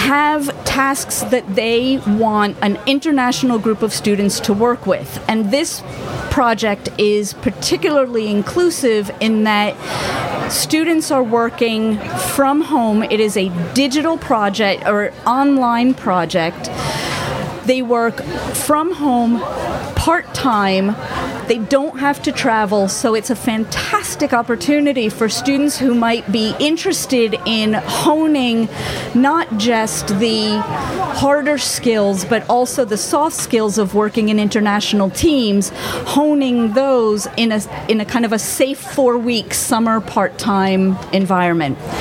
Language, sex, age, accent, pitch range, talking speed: Swedish, female, 30-49, American, 210-260 Hz, 125 wpm